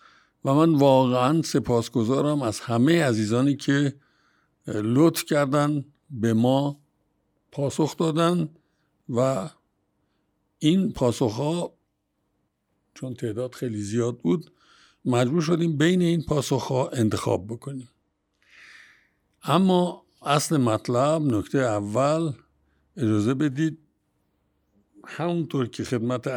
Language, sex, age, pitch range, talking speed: Persian, male, 60-79, 120-160 Hz, 95 wpm